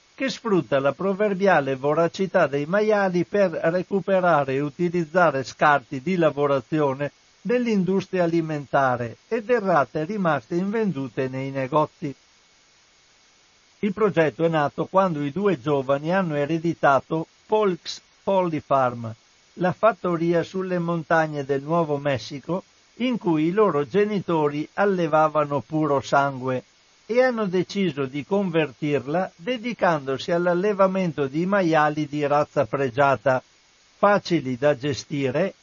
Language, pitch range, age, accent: Italian, 140-190 Hz, 60-79, native